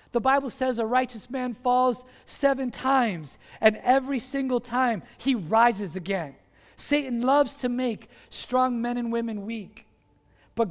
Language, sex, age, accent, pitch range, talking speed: English, male, 40-59, American, 205-265 Hz, 145 wpm